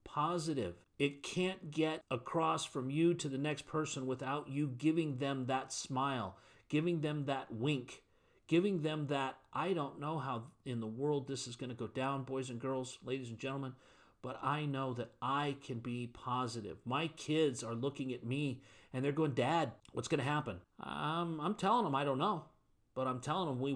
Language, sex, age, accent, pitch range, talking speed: English, male, 40-59, American, 130-160 Hz, 195 wpm